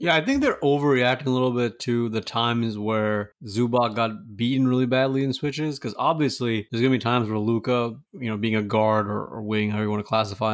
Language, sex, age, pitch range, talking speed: English, male, 20-39, 110-130 Hz, 235 wpm